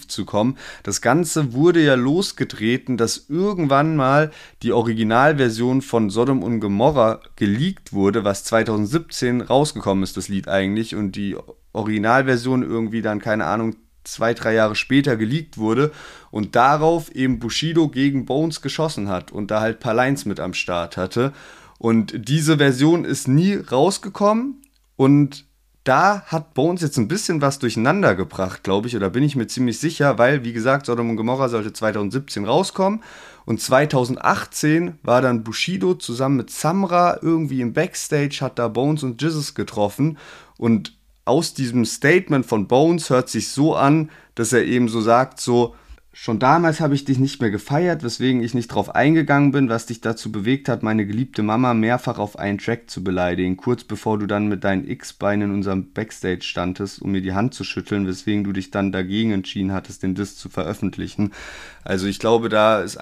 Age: 30-49